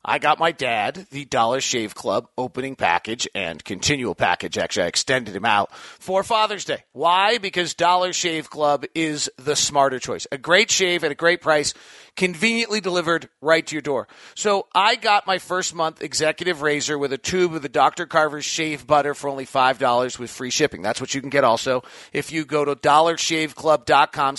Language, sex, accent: English, male, American